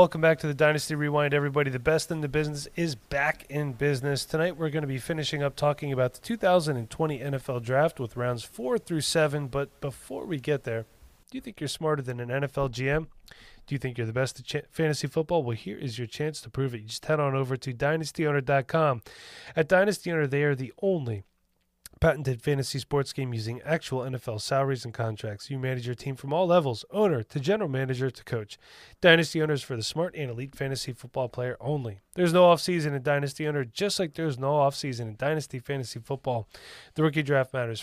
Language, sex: English, male